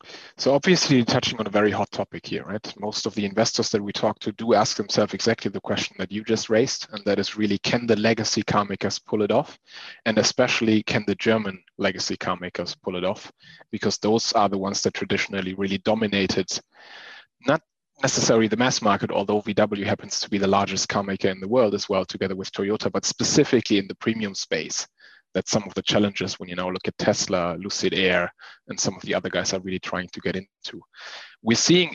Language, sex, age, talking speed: English, male, 30-49, 215 wpm